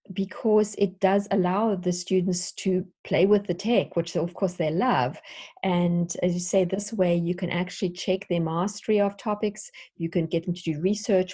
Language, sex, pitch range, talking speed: English, female, 165-195 Hz, 195 wpm